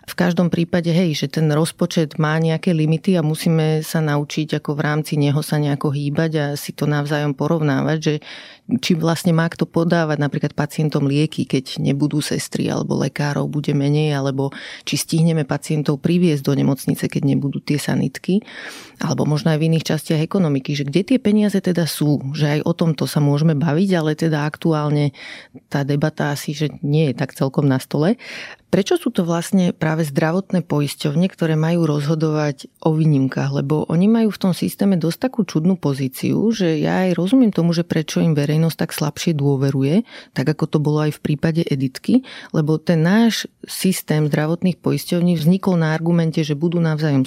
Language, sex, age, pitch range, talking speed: Slovak, female, 30-49, 150-175 Hz, 180 wpm